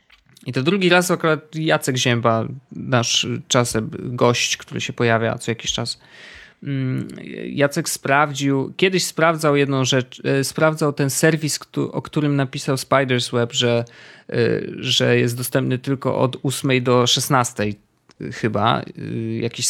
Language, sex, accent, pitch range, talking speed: Polish, male, native, 120-155 Hz, 125 wpm